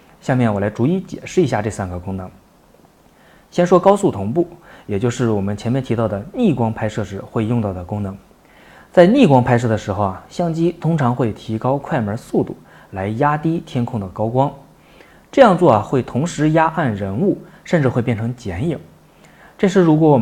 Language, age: Chinese, 20-39